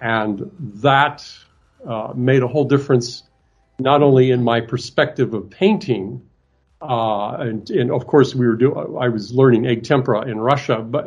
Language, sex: English, male